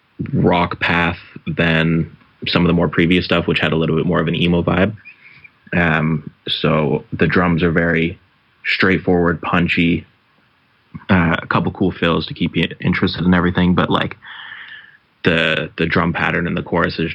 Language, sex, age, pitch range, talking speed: English, male, 20-39, 85-90 Hz, 170 wpm